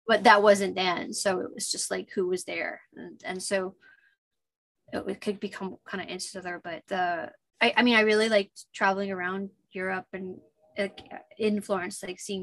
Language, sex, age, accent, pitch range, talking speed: English, female, 20-39, American, 180-215 Hz, 195 wpm